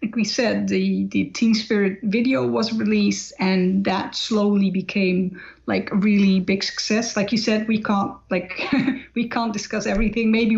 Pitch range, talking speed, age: 185-215 Hz, 170 wpm, 30-49